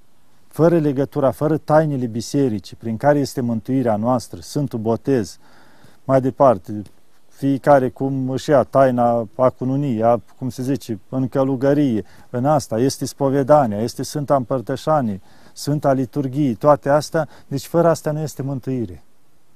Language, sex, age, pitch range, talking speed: Romanian, male, 40-59, 125-155 Hz, 135 wpm